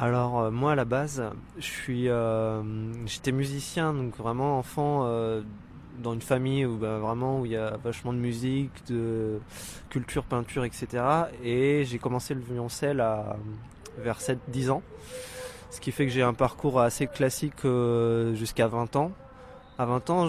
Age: 20-39